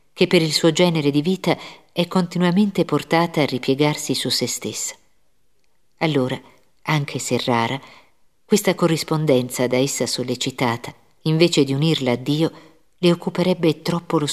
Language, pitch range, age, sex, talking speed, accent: Italian, 130-165 Hz, 50-69, female, 140 wpm, native